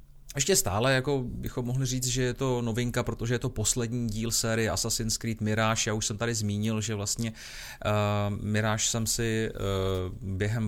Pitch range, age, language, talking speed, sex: 110-130 Hz, 30-49, Czech, 185 wpm, male